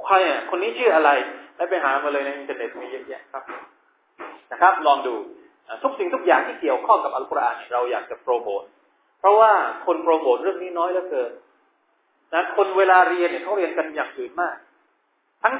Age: 30-49